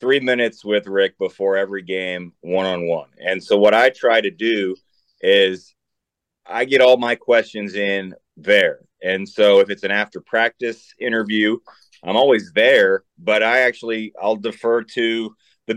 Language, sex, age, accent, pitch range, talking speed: English, male, 30-49, American, 100-130 Hz, 150 wpm